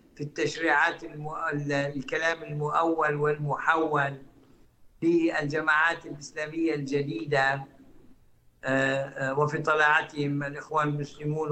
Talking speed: 70 wpm